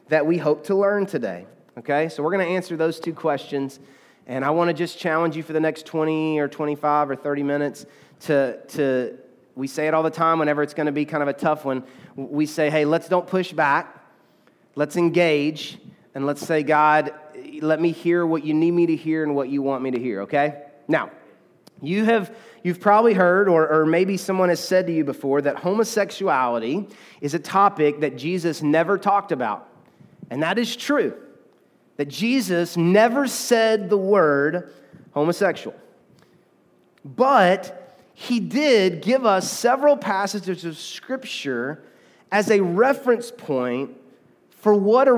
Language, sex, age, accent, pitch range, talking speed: English, male, 30-49, American, 150-200 Hz, 175 wpm